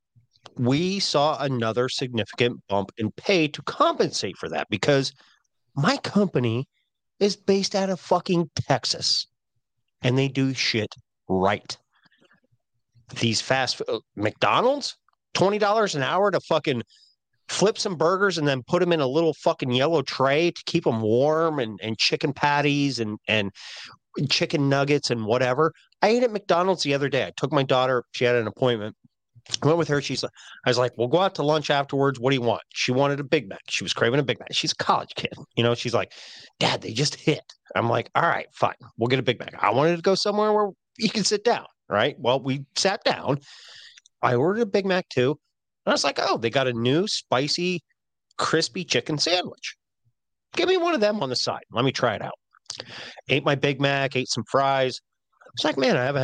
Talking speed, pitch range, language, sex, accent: 200 wpm, 120-175 Hz, English, male, American